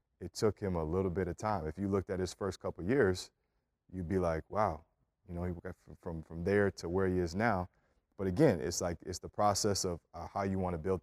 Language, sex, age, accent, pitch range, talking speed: English, male, 30-49, American, 85-100 Hz, 260 wpm